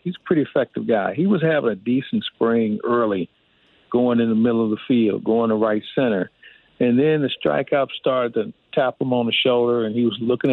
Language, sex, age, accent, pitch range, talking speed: English, male, 50-69, American, 115-140 Hz, 215 wpm